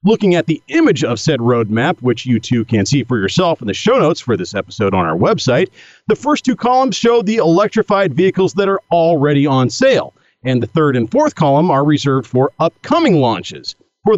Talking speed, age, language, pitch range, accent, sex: 205 wpm, 40-59, English, 135-195 Hz, American, male